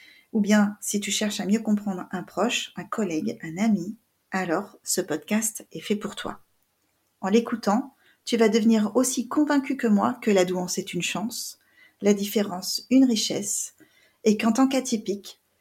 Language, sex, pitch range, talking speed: French, female, 195-250 Hz, 170 wpm